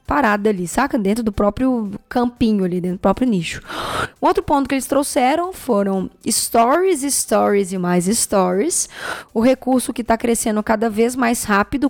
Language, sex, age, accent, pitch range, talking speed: Portuguese, female, 10-29, Brazilian, 215-280 Hz, 165 wpm